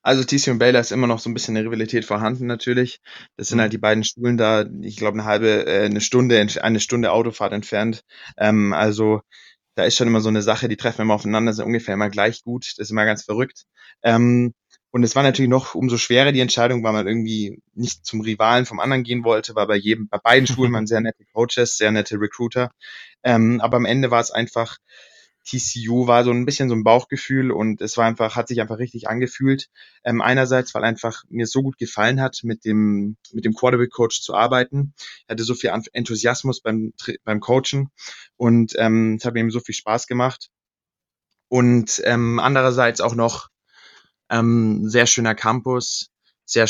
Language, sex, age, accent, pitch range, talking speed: German, male, 20-39, German, 110-125 Hz, 195 wpm